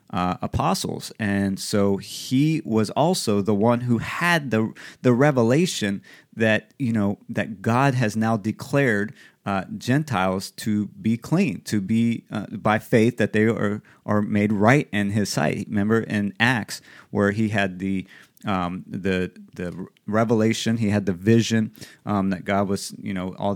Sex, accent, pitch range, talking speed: male, American, 100-130 Hz, 160 wpm